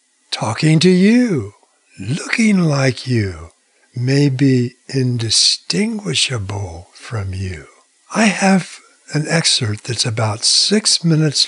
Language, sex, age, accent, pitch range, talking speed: English, male, 60-79, American, 110-155 Hz, 100 wpm